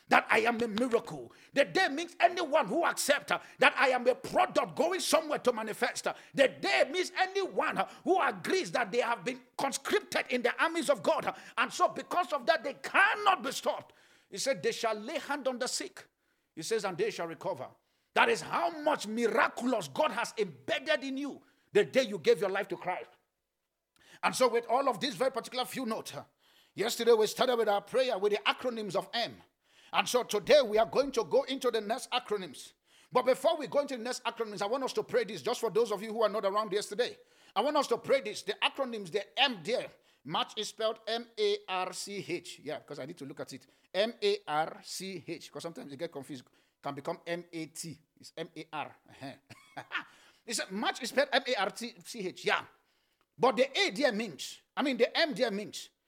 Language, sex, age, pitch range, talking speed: English, male, 50-69, 205-280 Hz, 200 wpm